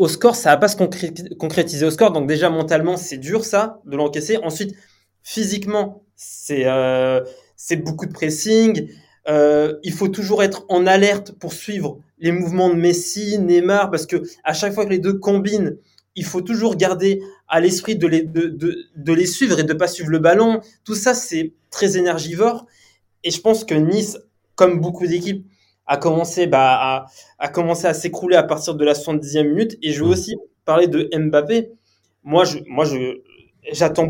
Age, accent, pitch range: 20-39, French, 150-190 Hz